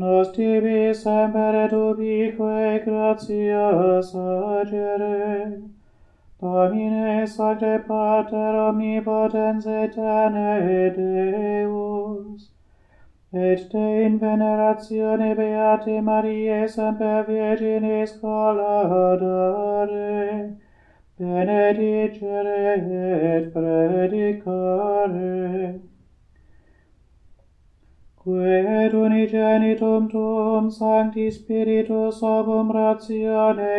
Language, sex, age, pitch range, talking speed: English, male, 30-49, 190-220 Hz, 55 wpm